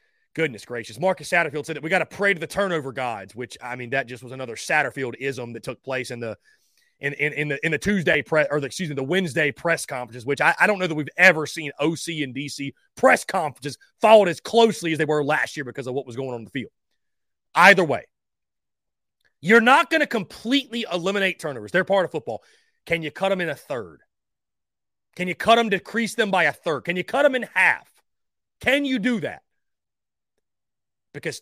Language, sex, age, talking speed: English, male, 30-49, 220 wpm